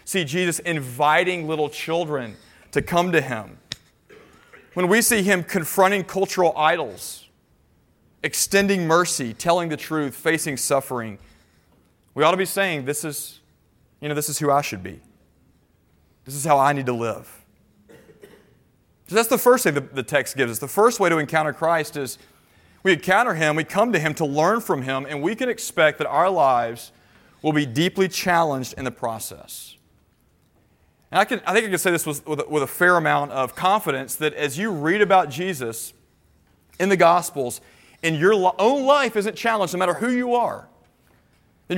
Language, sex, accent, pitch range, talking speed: English, male, American, 135-180 Hz, 180 wpm